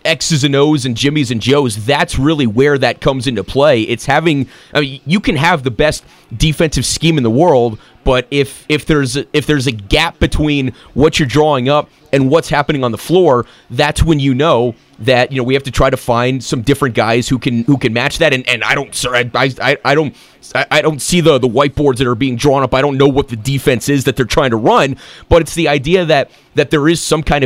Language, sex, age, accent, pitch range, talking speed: English, male, 30-49, American, 130-160 Hz, 245 wpm